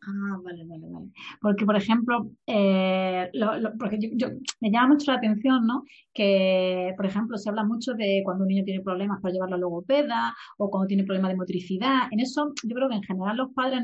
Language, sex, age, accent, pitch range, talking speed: Spanish, female, 30-49, Spanish, 195-250 Hz, 215 wpm